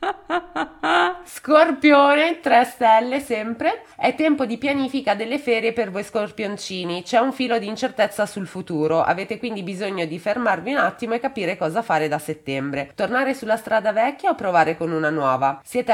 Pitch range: 155-225 Hz